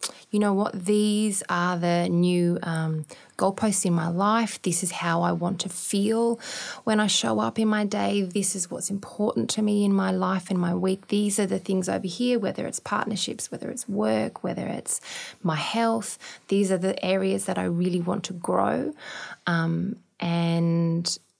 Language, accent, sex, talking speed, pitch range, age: English, Australian, female, 185 wpm, 175-205 Hz, 20-39